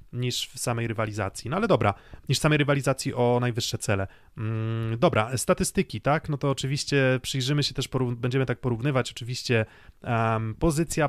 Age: 30-49